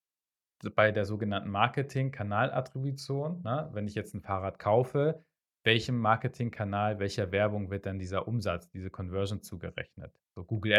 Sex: male